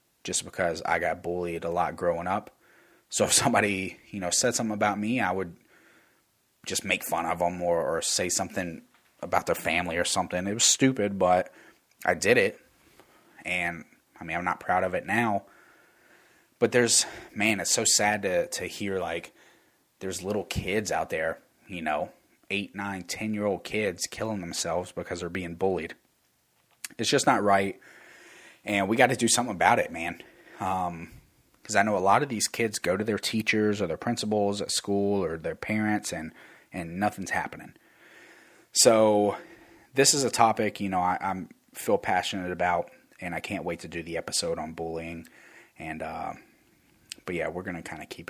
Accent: American